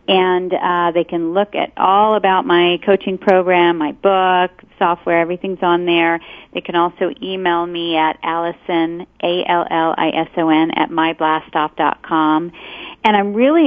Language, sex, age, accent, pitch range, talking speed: English, female, 40-59, American, 170-205 Hz, 130 wpm